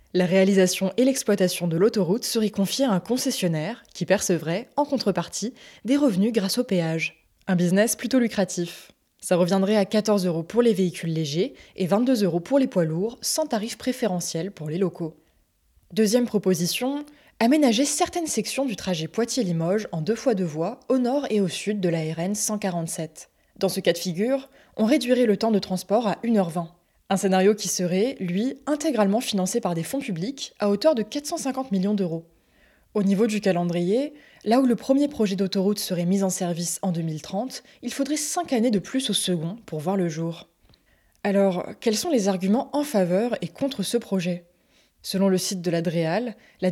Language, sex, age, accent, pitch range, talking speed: French, female, 20-39, French, 180-235 Hz, 185 wpm